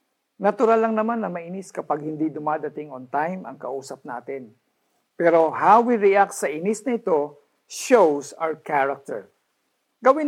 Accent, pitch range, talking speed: native, 150-210 Hz, 140 wpm